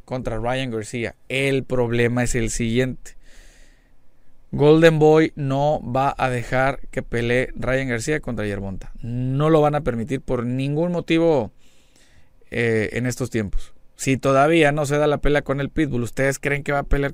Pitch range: 120-145 Hz